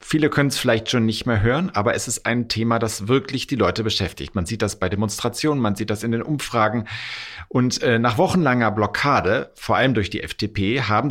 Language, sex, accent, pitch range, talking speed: German, male, German, 100-130 Hz, 210 wpm